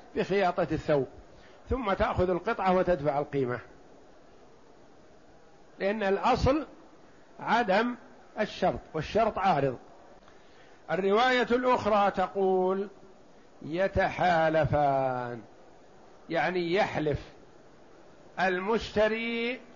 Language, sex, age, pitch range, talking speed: Arabic, male, 50-69, 175-215 Hz, 60 wpm